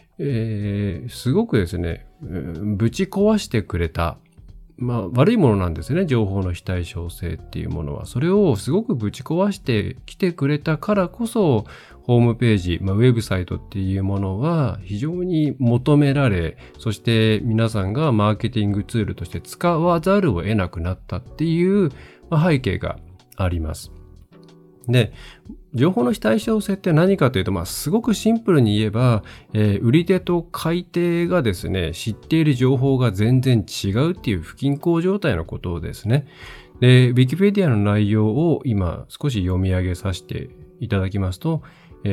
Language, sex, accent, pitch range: Japanese, male, native, 100-155 Hz